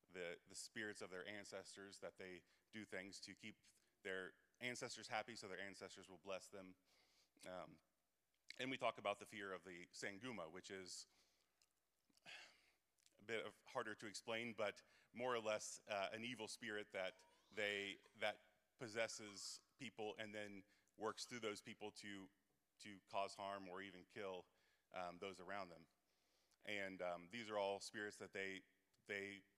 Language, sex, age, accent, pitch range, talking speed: English, male, 30-49, American, 95-110 Hz, 160 wpm